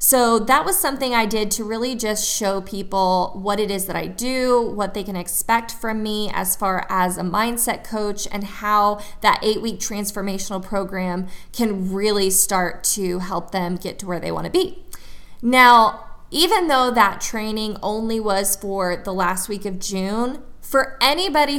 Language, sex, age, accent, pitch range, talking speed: English, female, 20-39, American, 195-240 Hz, 175 wpm